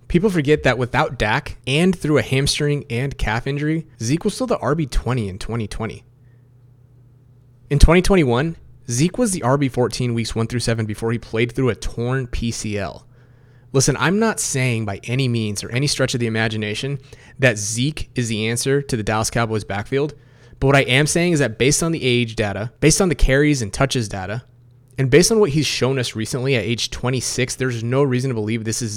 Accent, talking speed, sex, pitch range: American, 195 wpm, male, 115-140 Hz